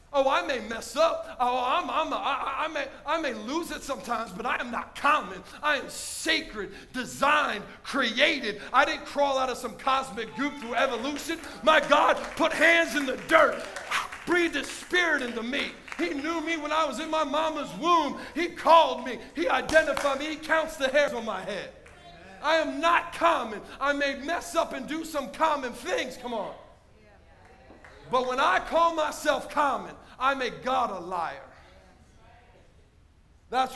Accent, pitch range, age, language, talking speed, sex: American, 220-290 Hz, 40-59, English, 165 wpm, male